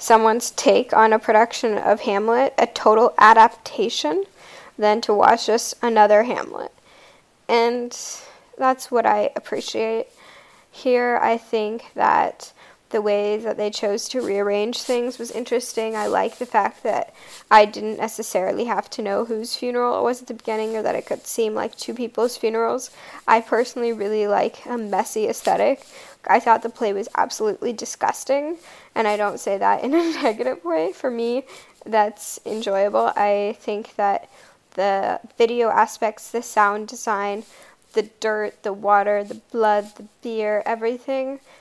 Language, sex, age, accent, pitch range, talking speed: English, female, 10-29, American, 210-245 Hz, 155 wpm